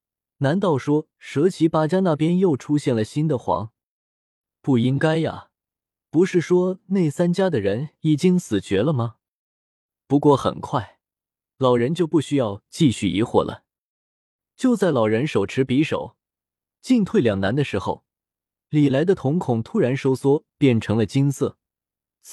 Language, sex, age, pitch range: Chinese, male, 20-39, 115-165 Hz